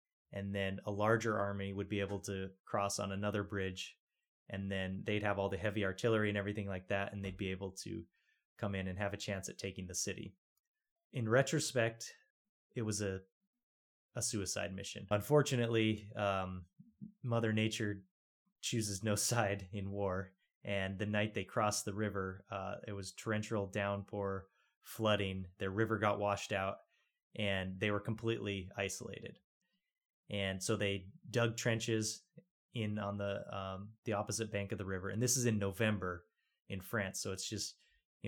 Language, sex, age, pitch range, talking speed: English, male, 20-39, 95-115 Hz, 165 wpm